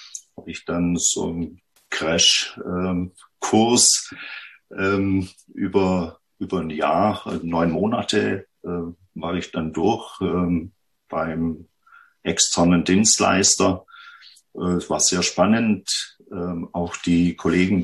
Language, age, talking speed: German, 50-69, 105 wpm